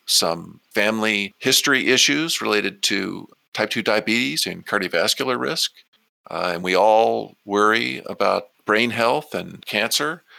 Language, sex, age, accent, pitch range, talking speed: English, male, 50-69, American, 95-120 Hz, 125 wpm